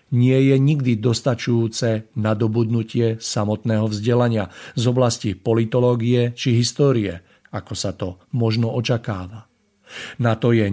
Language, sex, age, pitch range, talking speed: Slovak, male, 50-69, 110-125 Hz, 120 wpm